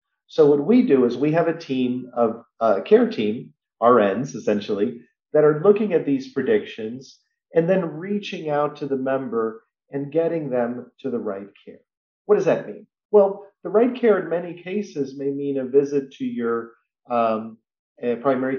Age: 40-59